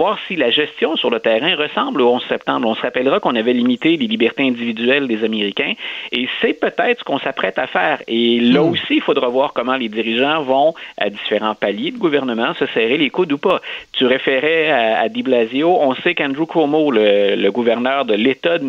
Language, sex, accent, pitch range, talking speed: French, male, Canadian, 115-170 Hz, 210 wpm